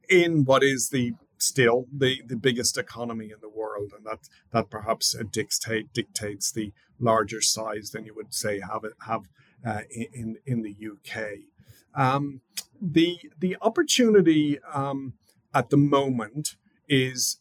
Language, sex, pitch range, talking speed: English, male, 115-135 Hz, 150 wpm